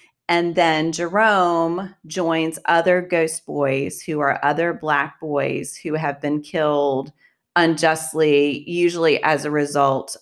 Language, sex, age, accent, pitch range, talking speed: English, female, 30-49, American, 150-180 Hz, 125 wpm